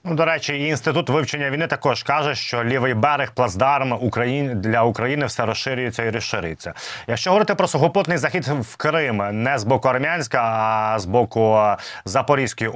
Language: Ukrainian